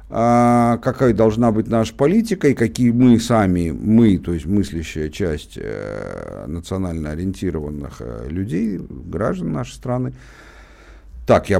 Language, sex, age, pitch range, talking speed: Russian, male, 50-69, 90-120 Hz, 115 wpm